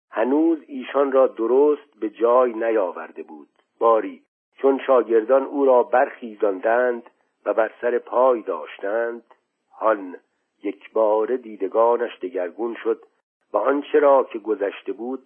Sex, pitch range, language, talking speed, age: male, 120-180 Hz, Persian, 120 wpm, 50-69